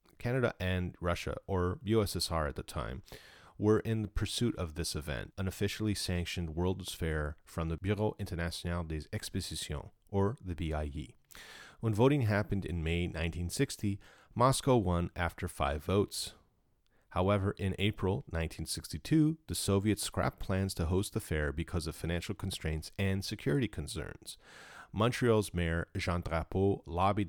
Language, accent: English, American